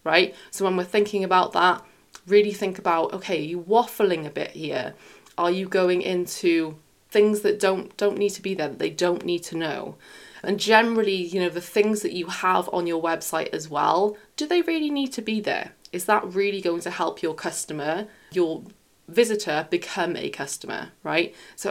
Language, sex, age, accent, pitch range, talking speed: English, female, 20-39, British, 175-225 Hz, 195 wpm